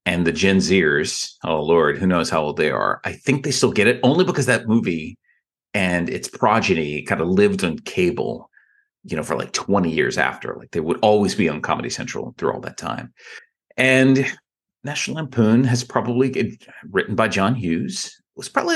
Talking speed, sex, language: 200 wpm, male, English